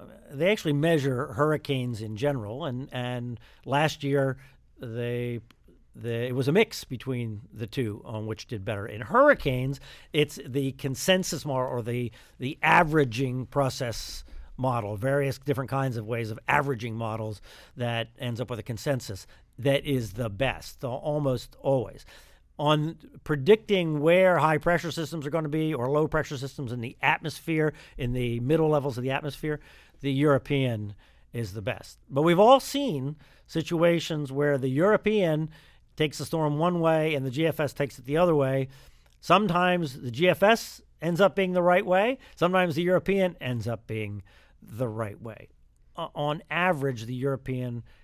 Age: 50-69